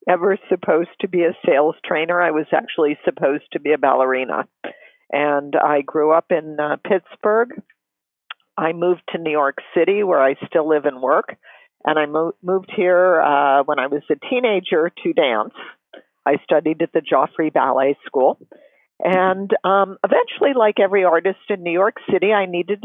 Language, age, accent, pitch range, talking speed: English, 50-69, American, 155-195 Hz, 175 wpm